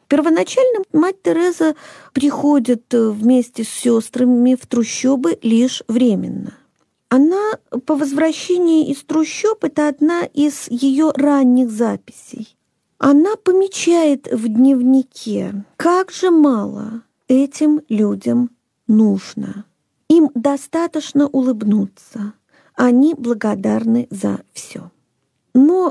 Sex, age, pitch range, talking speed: female, 40-59, 235-305 Hz, 95 wpm